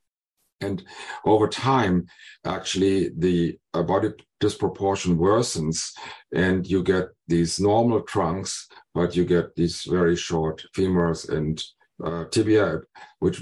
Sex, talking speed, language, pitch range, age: male, 110 wpm, English, 85-100 Hz, 50-69